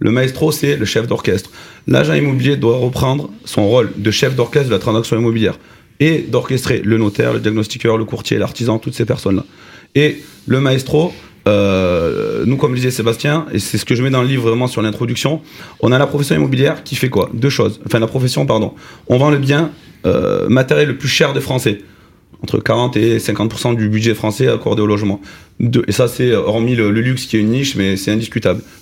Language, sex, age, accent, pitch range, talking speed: French, male, 30-49, French, 115-145 Hz, 210 wpm